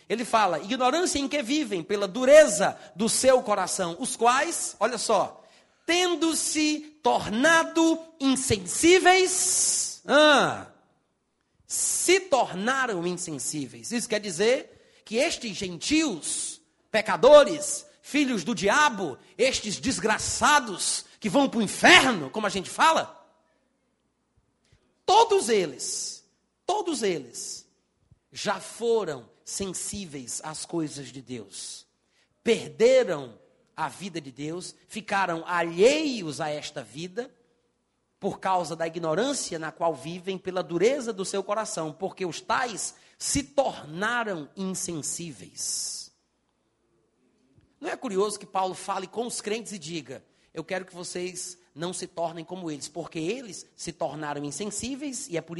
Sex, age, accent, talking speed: male, 40-59, Brazilian, 120 wpm